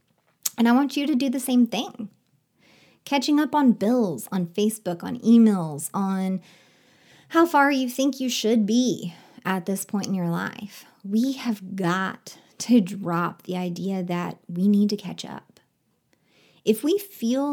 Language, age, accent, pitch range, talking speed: English, 30-49, American, 190-245 Hz, 160 wpm